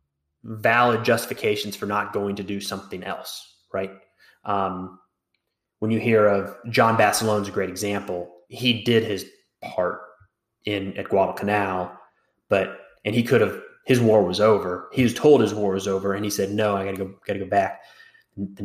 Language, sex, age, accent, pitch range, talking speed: English, male, 20-39, American, 95-110 Hz, 175 wpm